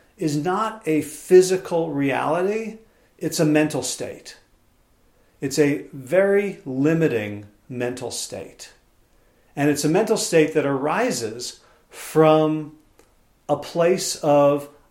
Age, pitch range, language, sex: 40-59, 135-165 Hz, English, male